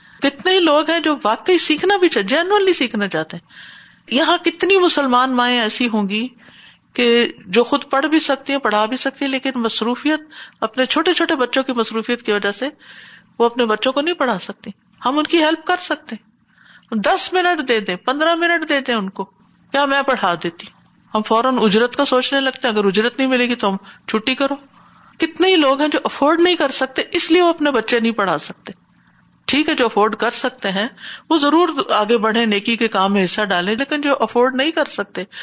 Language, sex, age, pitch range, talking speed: Urdu, female, 50-69, 220-295 Hz, 205 wpm